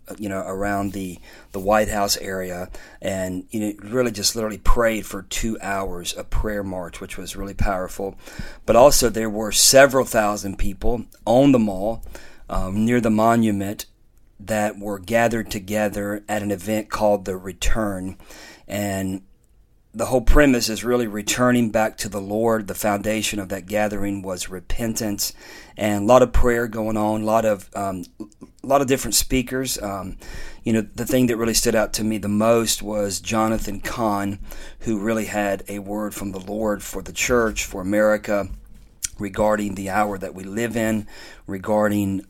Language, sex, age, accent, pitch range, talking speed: English, male, 40-59, American, 100-110 Hz, 170 wpm